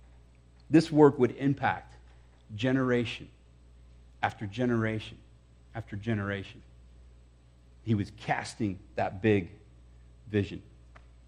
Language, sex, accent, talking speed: English, male, American, 80 wpm